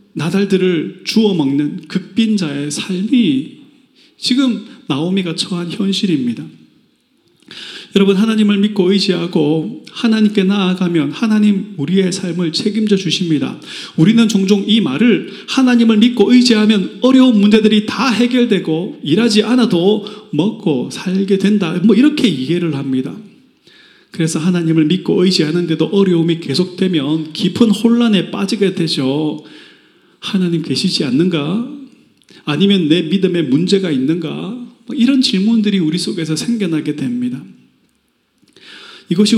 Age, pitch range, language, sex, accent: 30-49, 165-220 Hz, Korean, male, native